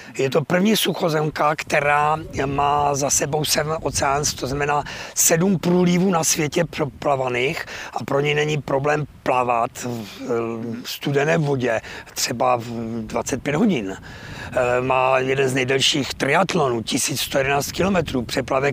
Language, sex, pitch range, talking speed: Czech, male, 125-150 Hz, 120 wpm